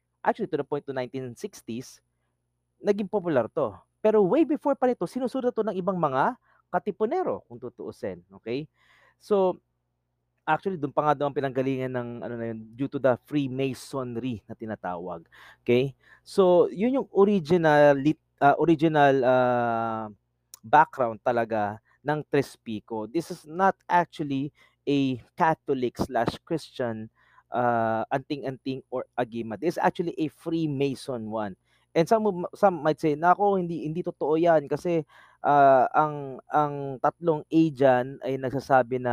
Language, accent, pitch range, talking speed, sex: Filipino, native, 120-175 Hz, 140 wpm, male